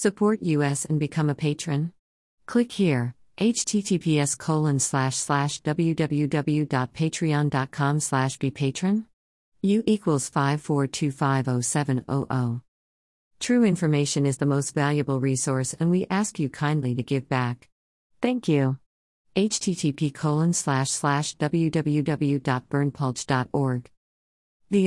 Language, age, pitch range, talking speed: English, 50-69, 130-155 Hz, 95 wpm